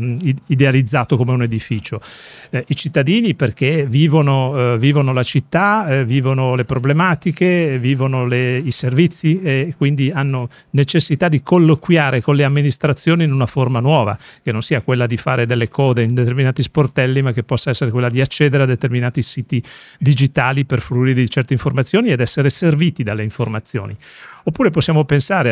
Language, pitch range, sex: Italian, 125-150 Hz, male